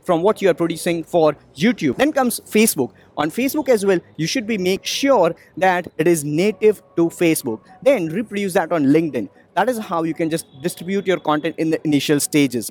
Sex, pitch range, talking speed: male, 150-200 Hz, 205 wpm